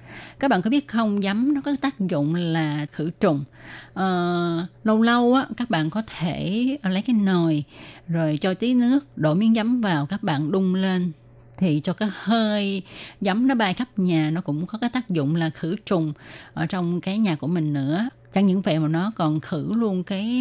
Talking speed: 200 wpm